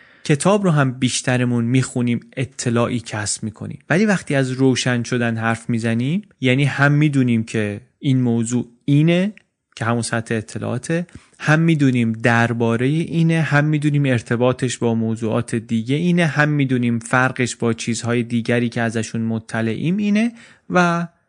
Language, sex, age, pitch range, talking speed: Persian, male, 30-49, 120-150 Hz, 135 wpm